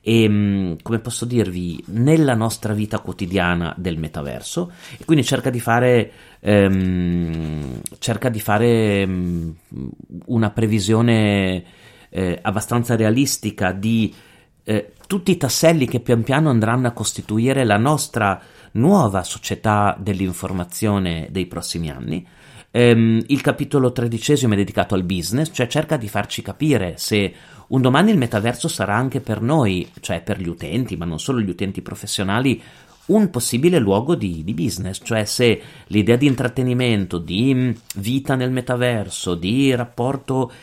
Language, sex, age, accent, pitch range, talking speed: Italian, male, 30-49, native, 95-125 Hz, 130 wpm